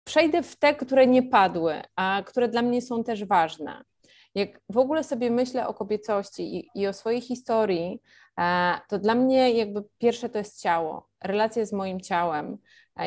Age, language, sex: 30-49, Polish, female